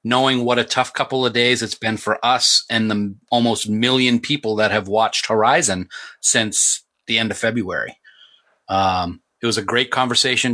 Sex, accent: male, American